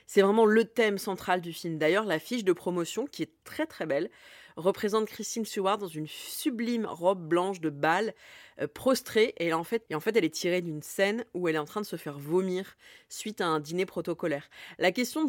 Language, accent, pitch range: French, French, 175-240 Hz